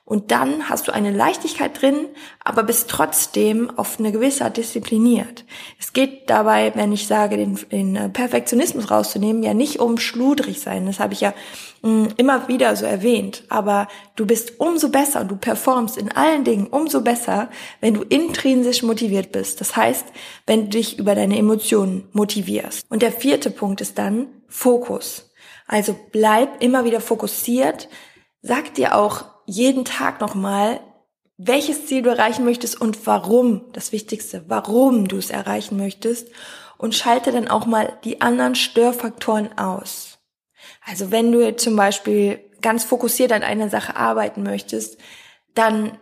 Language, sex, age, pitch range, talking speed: German, female, 20-39, 205-245 Hz, 155 wpm